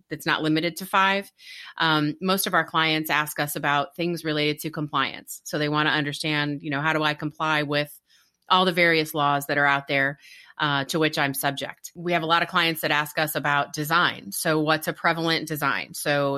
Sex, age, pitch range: female, 30-49, 145-170 Hz